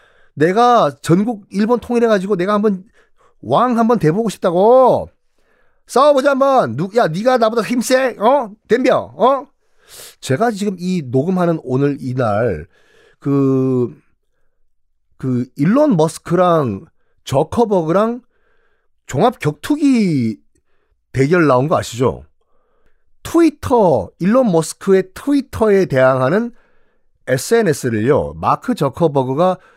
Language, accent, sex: Korean, native, male